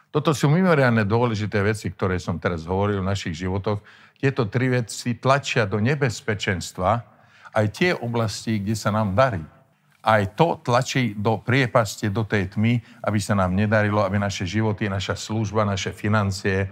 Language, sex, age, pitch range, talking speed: Slovak, male, 50-69, 105-130 Hz, 160 wpm